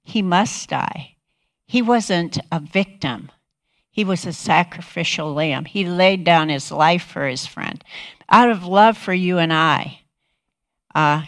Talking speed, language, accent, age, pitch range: 150 wpm, English, American, 60-79, 150-180 Hz